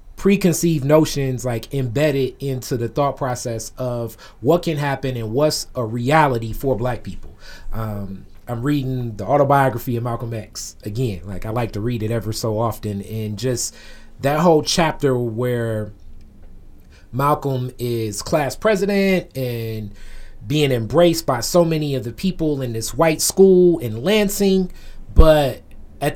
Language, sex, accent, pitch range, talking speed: English, male, American, 115-150 Hz, 145 wpm